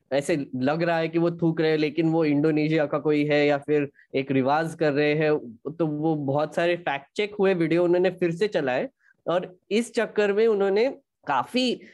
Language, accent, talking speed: Hindi, native, 200 wpm